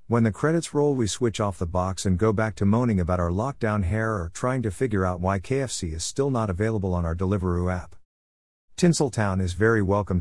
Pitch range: 90-115 Hz